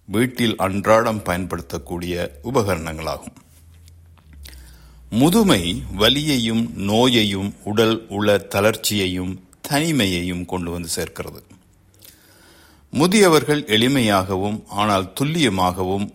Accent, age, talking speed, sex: native, 60-79, 40 wpm, male